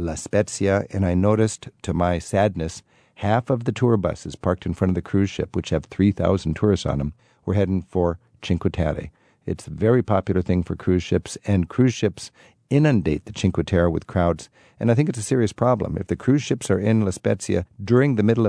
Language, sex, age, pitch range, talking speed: English, male, 50-69, 90-110 Hz, 215 wpm